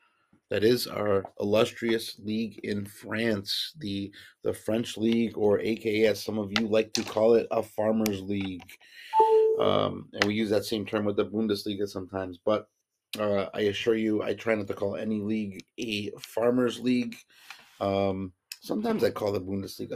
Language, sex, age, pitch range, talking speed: English, male, 30-49, 100-120 Hz, 170 wpm